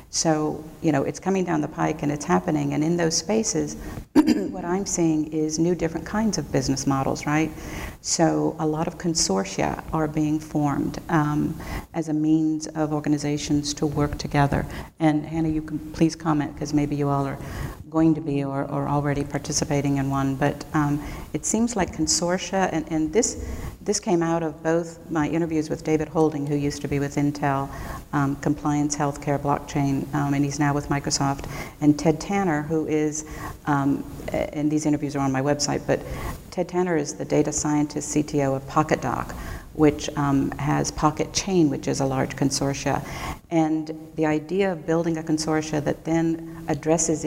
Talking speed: 180 wpm